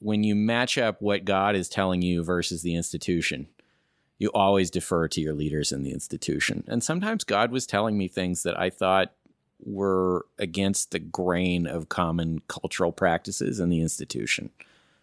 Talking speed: 170 wpm